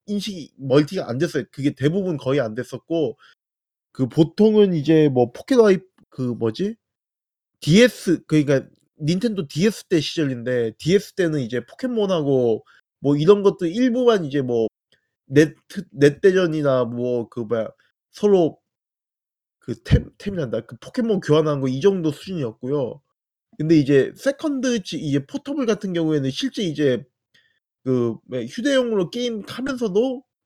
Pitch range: 140-210 Hz